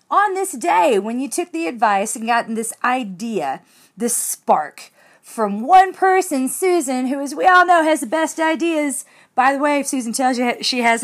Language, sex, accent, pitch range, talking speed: English, female, American, 215-295 Hz, 195 wpm